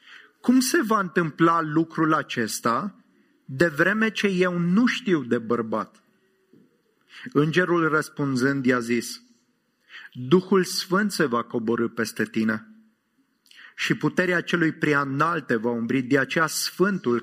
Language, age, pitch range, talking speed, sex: English, 30-49, 135-185 Hz, 120 wpm, male